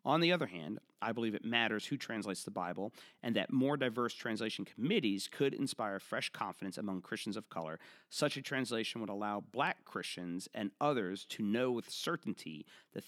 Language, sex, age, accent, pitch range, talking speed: English, male, 40-59, American, 90-115 Hz, 185 wpm